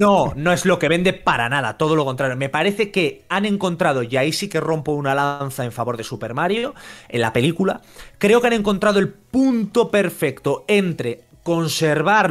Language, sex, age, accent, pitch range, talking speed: Spanish, male, 30-49, Spanish, 135-185 Hz, 195 wpm